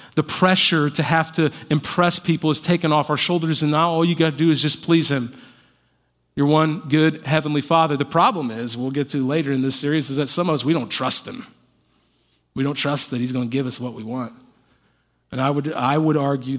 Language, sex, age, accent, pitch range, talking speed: English, male, 40-59, American, 150-190 Hz, 235 wpm